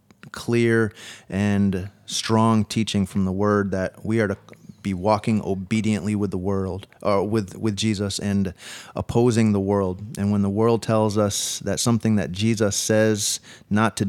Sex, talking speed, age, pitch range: male, 160 wpm, 30-49, 100-110 Hz